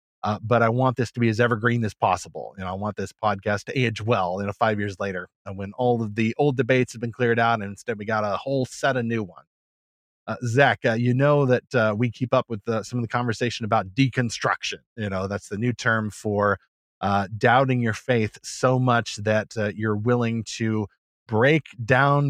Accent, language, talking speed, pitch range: American, English, 225 wpm, 105-125 Hz